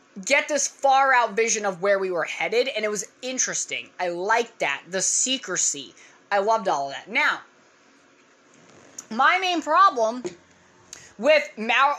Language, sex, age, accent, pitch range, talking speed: English, female, 20-39, American, 235-365 Hz, 155 wpm